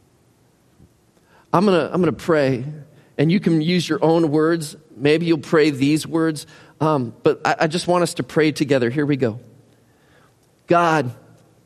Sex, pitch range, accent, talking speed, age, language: male, 135-170 Hz, American, 160 wpm, 40-59, English